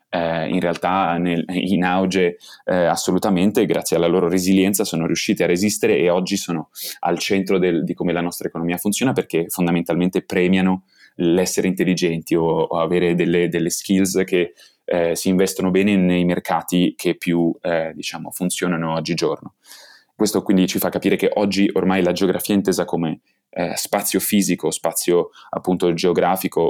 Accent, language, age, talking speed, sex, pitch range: native, Italian, 20-39, 155 wpm, male, 90-100 Hz